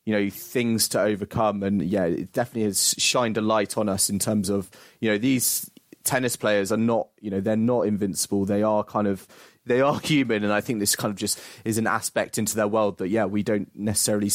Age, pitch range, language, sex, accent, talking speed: 30-49, 105-125 Hz, English, male, British, 230 wpm